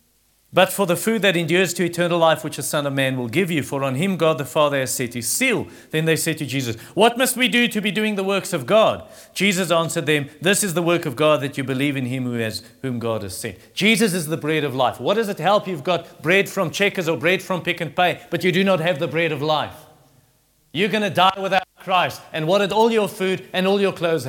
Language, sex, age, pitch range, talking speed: English, male, 40-59, 135-185 Hz, 265 wpm